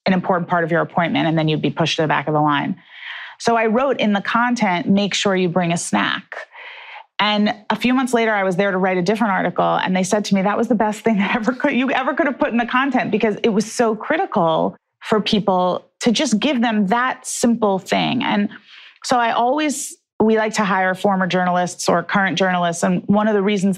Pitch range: 185-235 Hz